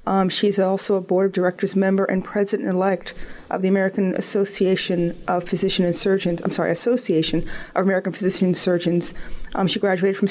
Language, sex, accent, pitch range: English, female, American, 180-200 Hz